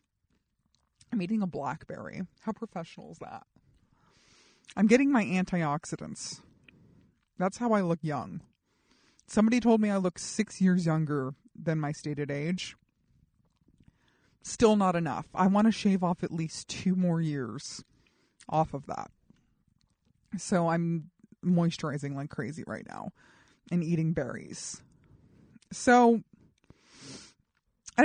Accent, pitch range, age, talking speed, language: American, 160-210 Hz, 30-49, 120 wpm, English